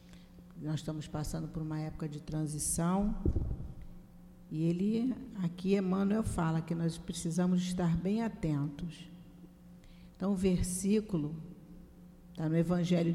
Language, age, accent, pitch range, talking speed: Portuguese, 50-69, Brazilian, 160-190 Hz, 115 wpm